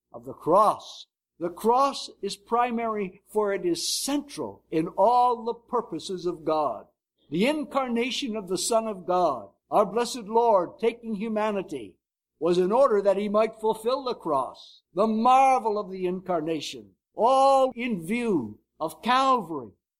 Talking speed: 145 wpm